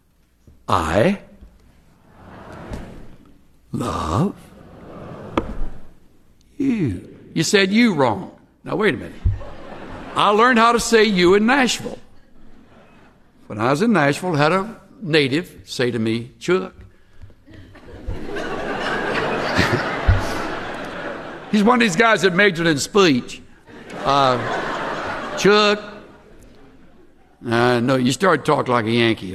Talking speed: 105 wpm